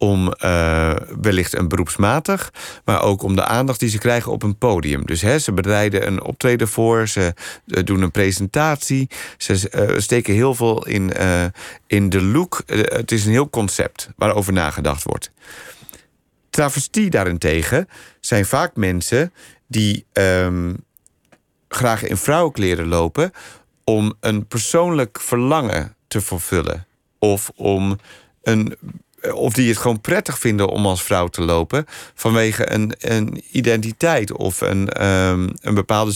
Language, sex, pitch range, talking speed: Dutch, male, 95-125 Hz, 145 wpm